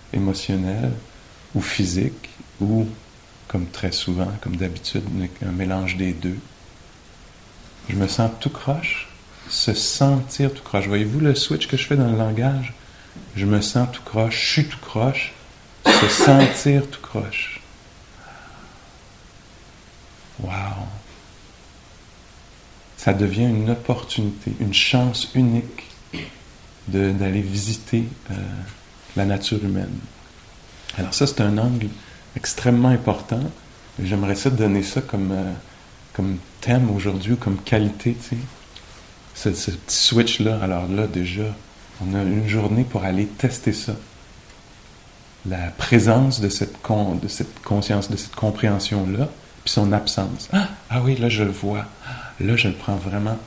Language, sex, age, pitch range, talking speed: English, male, 50-69, 95-120 Hz, 135 wpm